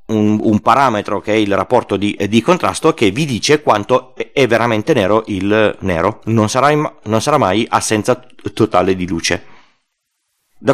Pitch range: 105-150 Hz